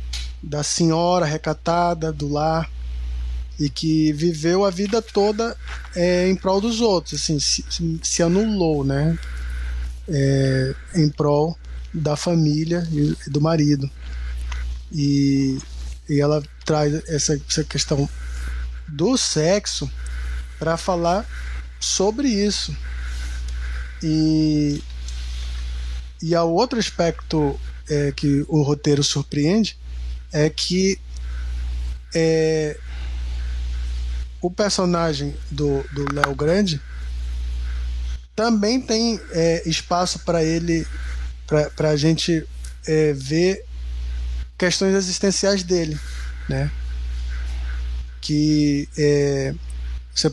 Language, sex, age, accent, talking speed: Portuguese, male, 20-39, Brazilian, 95 wpm